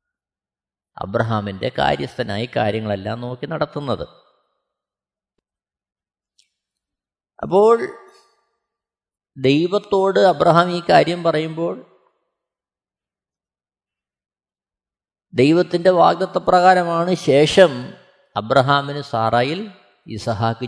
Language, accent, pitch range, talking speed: Malayalam, native, 115-180 Hz, 50 wpm